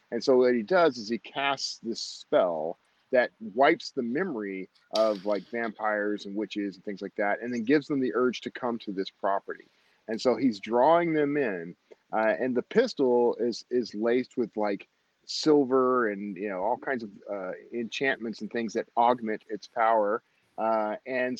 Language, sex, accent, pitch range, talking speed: English, male, American, 110-140 Hz, 185 wpm